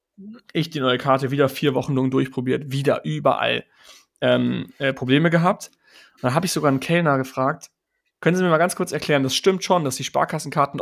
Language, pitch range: German, 130-170 Hz